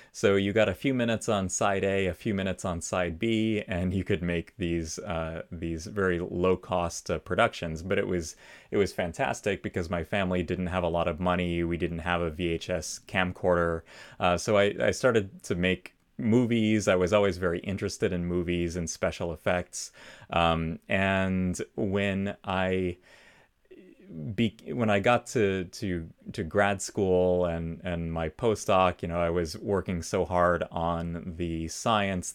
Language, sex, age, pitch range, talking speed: English, male, 30-49, 85-100 Hz, 175 wpm